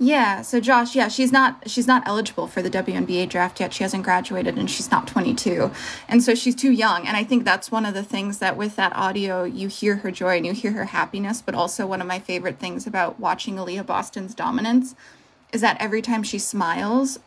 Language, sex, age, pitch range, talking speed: English, female, 20-39, 190-235 Hz, 225 wpm